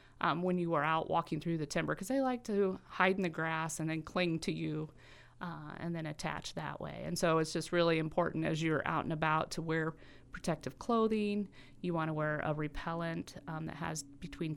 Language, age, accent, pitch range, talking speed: English, 30-49, American, 155-180 Hz, 220 wpm